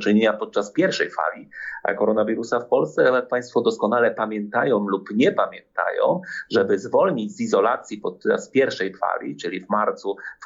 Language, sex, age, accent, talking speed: Polish, male, 30-49, native, 145 wpm